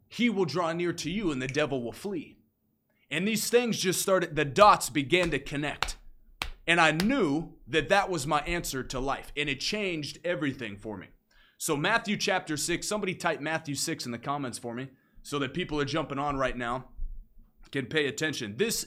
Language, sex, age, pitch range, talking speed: English, male, 30-49, 135-180 Hz, 195 wpm